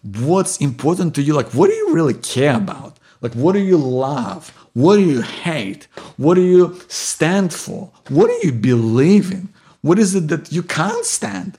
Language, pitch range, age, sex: English, 135-185 Hz, 50-69, male